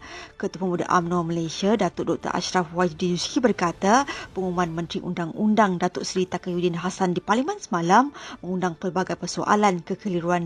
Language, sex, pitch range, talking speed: Malay, female, 180-215 Hz, 140 wpm